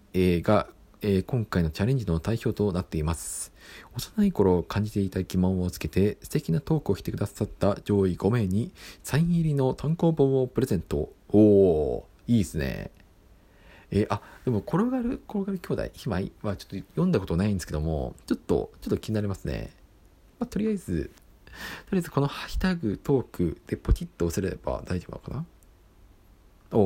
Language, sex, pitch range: Japanese, male, 85-130 Hz